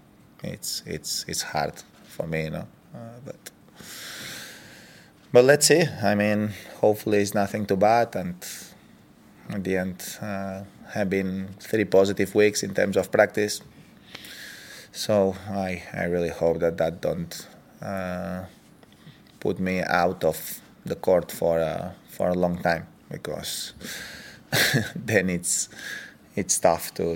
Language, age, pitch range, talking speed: German, 20-39, 90-100 Hz, 135 wpm